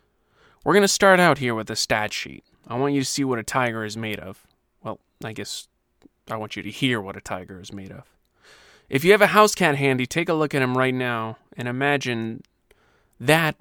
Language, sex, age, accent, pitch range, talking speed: English, male, 30-49, American, 115-145 Hz, 230 wpm